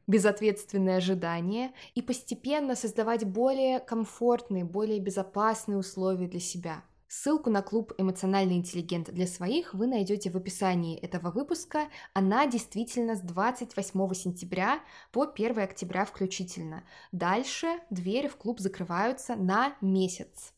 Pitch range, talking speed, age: 185-245 Hz, 120 wpm, 20-39